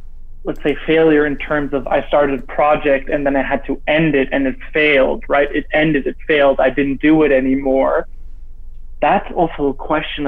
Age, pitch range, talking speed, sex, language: 20-39, 140-160 Hz, 200 wpm, male, English